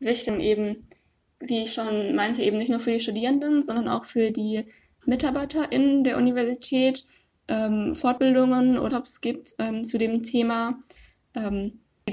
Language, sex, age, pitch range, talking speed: English, female, 10-29, 215-255 Hz, 145 wpm